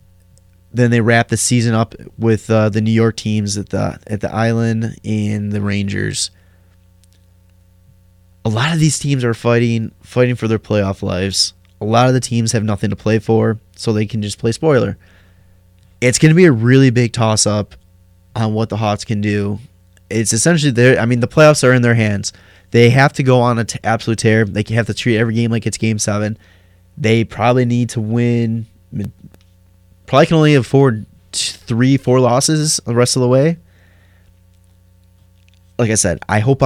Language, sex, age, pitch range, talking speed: English, male, 20-39, 90-115 Hz, 190 wpm